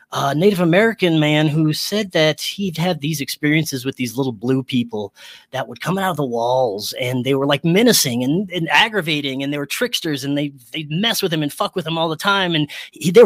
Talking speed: 235 wpm